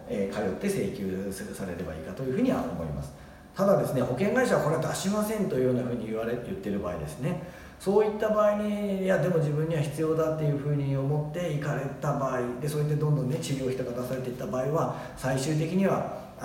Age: 40-59